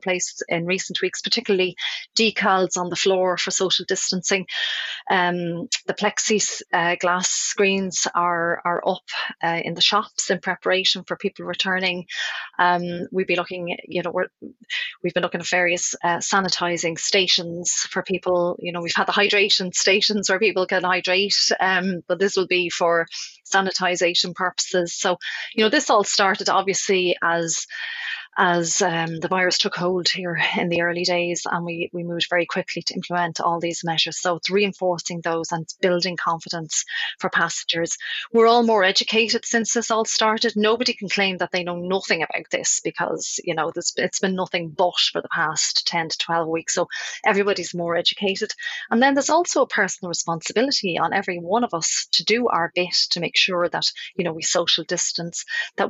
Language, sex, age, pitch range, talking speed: English, female, 30-49, 175-195 Hz, 180 wpm